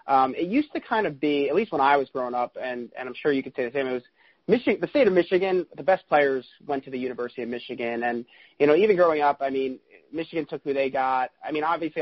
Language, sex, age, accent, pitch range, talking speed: English, male, 30-49, American, 125-150 Hz, 275 wpm